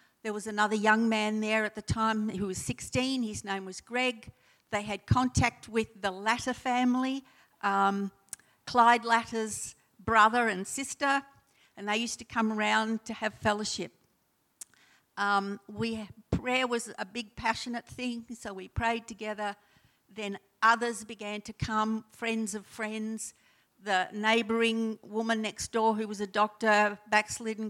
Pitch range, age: 210-235 Hz, 60-79